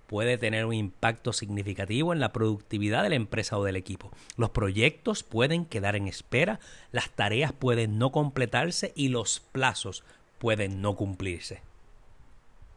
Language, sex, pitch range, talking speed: Spanish, male, 105-145 Hz, 145 wpm